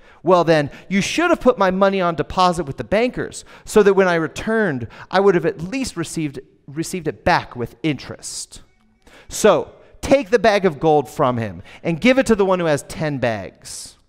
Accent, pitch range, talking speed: American, 115-195 Hz, 200 wpm